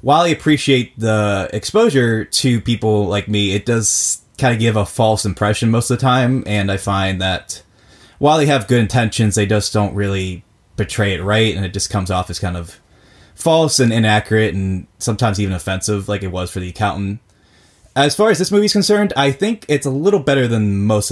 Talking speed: 205 wpm